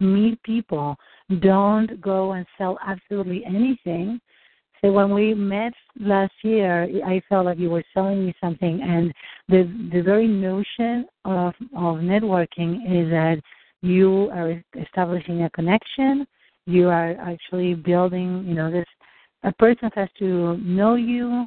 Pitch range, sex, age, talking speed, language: 170-205 Hz, female, 50-69, 140 wpm, English